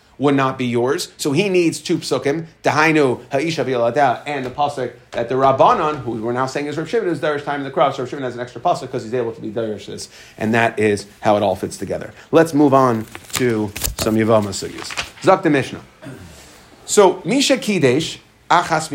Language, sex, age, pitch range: English, male, 30-49, 120-155 Hz